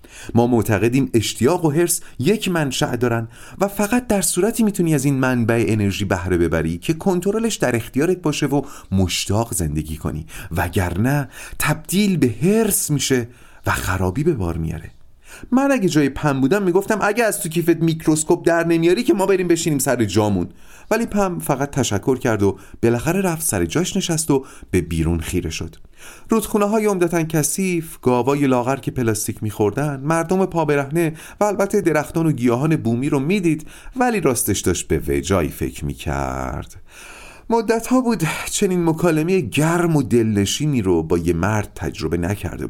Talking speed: 160 wpm